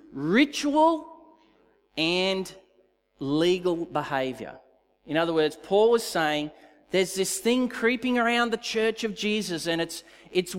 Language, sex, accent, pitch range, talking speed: English, male, Australian, 145-210 Hz, 125 wpm